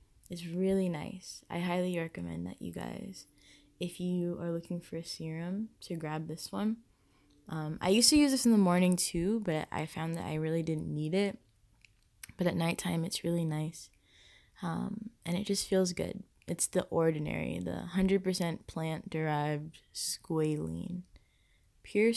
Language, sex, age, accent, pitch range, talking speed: English, female, 20-39, American, 160-195 Hz, 160 wpm